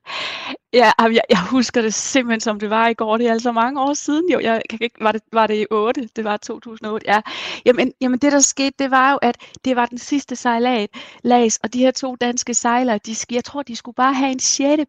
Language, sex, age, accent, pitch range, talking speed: Danish, female, 30-49, native, 225-270 Hz, 230 wpm